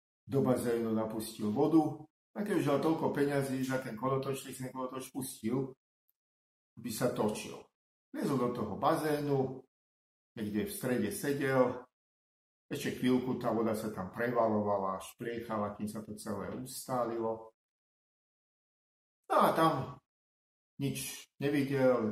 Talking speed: 125 wpm